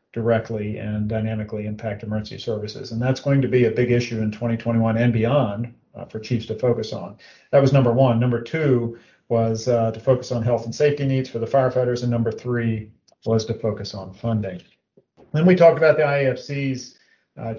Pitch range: 115-130 Hz